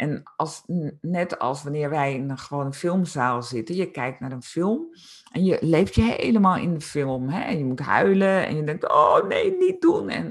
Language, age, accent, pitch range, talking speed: Dutch, 50-69, Dutch, 135-185 Hz, 220 wpm